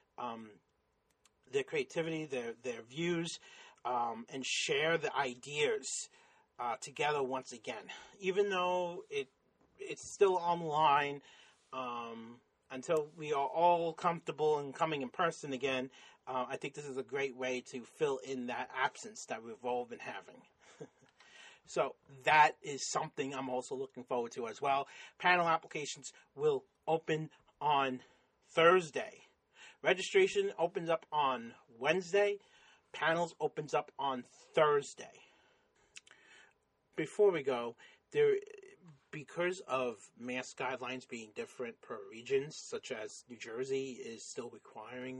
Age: 30-49